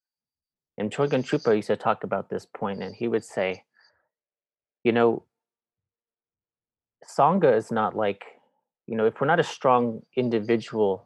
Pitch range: 110-130 Hz